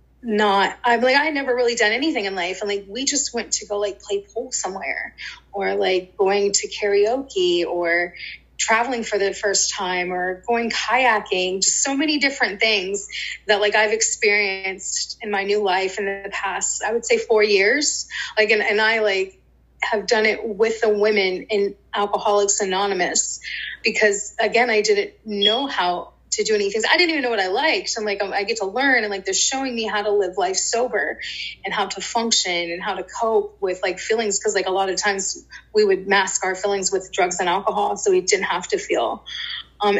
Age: 20-39